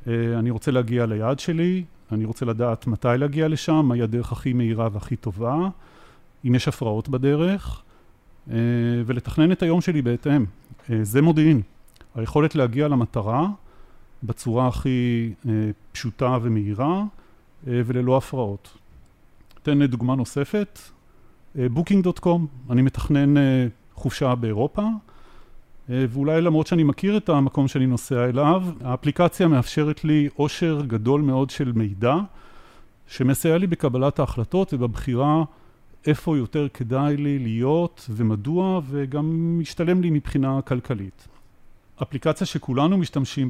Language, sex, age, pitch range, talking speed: Hebrew, male, 40-59, 115-150 Hz, 110 wpm